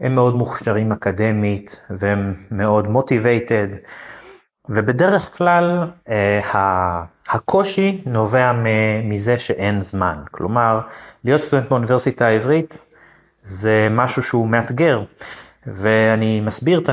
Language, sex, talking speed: English, male, 45 wpm